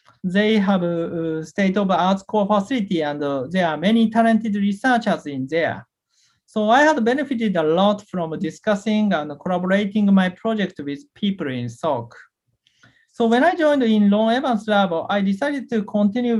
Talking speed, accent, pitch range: 170 wpm, Japanese, 170-215 Hz